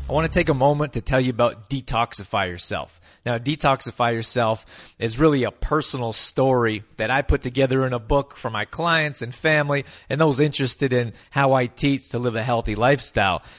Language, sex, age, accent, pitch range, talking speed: English, male, 30-49, American, 110-130 Hz, 195 wpm